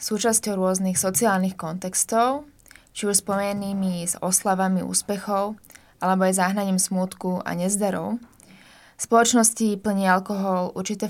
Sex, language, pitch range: female, Slovak, 180-205 Hz